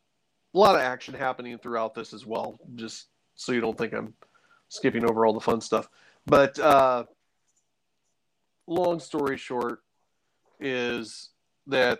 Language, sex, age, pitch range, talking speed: English, male, 40-59, 115-130 Hz, 140 wpm